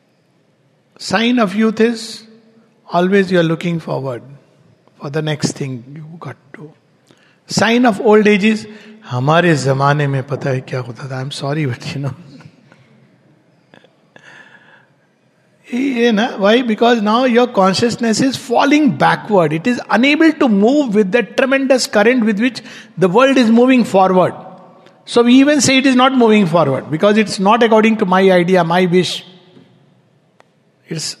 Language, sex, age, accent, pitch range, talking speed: English, male, 60-79, Indian, 175-230 Hz, 135 wpm